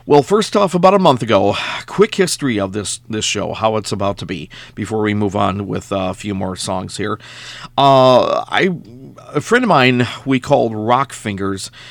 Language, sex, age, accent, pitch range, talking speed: English, male, 50-69, American, 110-145 Hz, 190 wpm